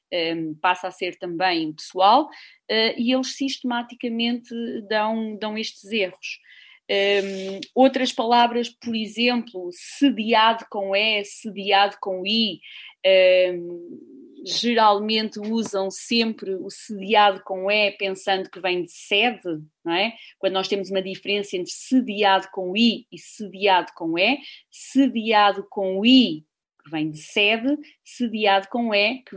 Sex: female